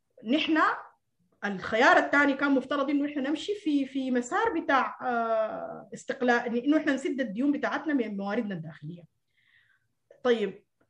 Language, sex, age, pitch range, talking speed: Arabic, female, 30-49, 195-280 Hz, 120 wpm